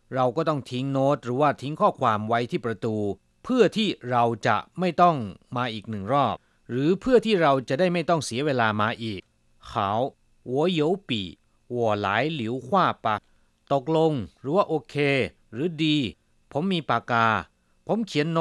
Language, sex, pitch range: Chinese, male, 100-145 Hz